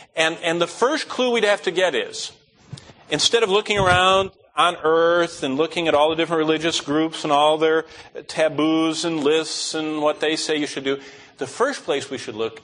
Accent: American